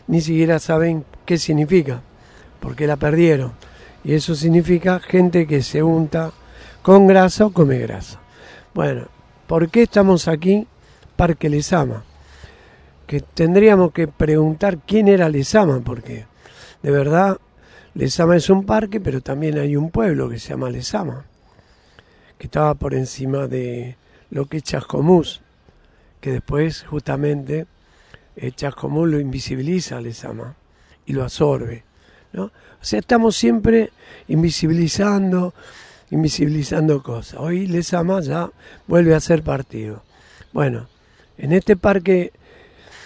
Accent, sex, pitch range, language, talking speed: Argentinian, male, 130-175 Hz, Spanish, 120 wpm